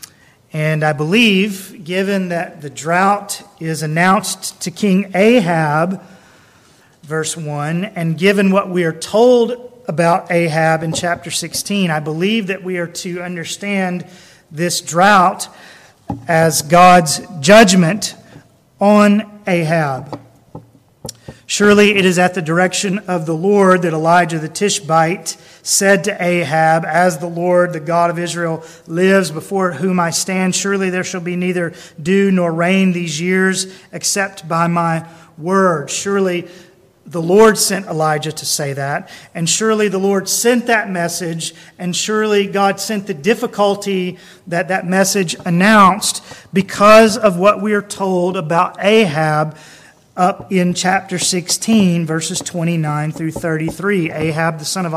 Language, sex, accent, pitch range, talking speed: English, male, American, 170-200 Hz, 140 wpm